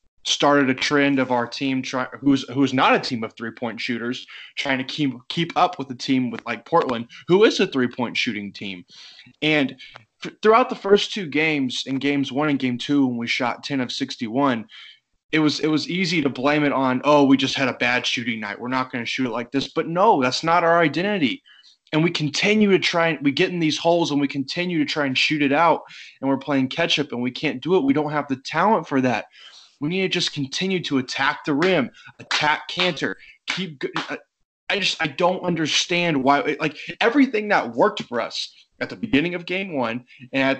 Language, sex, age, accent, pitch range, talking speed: English, male, 20-39, American, 130-165 Hz, 225 wpm